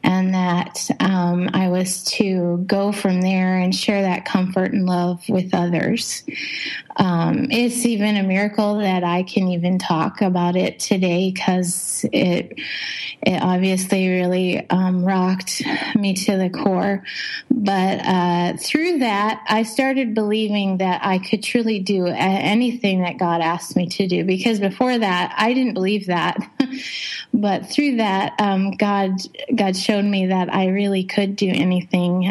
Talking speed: 150 wpm